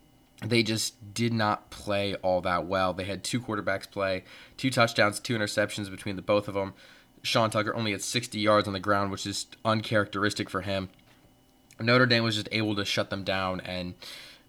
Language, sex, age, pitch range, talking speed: English, male, 20-39, 95-120 Hz, 190 wpm